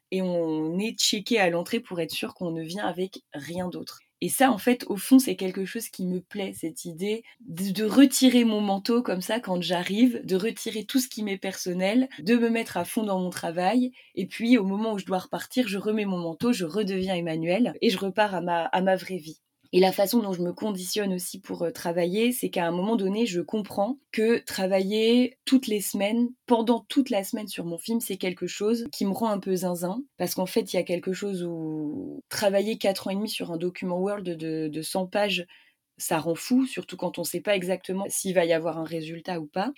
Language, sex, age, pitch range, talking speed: French, female, 20-39, 180-225 Hz, 230 wpm